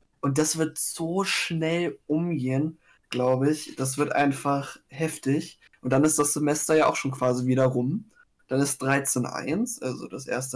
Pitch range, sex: 130-155 Hz, male